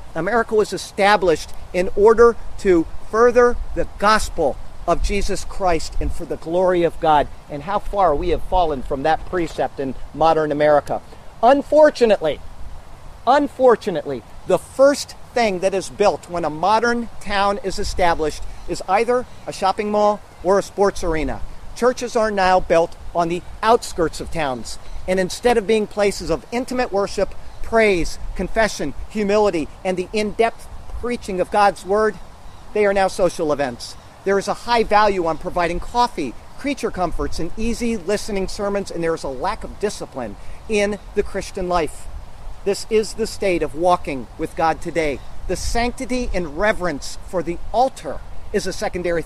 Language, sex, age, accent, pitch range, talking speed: English, male, 50-69, American, 165-215 Hz, 155 wpm